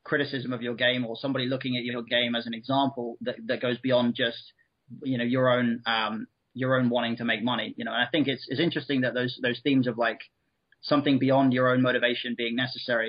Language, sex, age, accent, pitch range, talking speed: English, male, 30-49, British, 120-135 Hz, 230 wpm